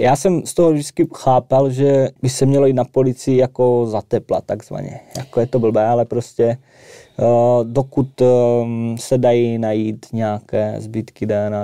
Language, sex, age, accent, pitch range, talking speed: Czech, male, 20-39, native, 105-125 Hz, 150 wpm